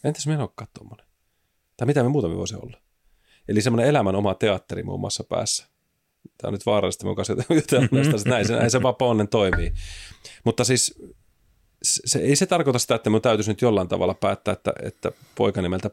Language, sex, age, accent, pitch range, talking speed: Finnish, male, 30-49, native, 95-120 Hz, 190 wpm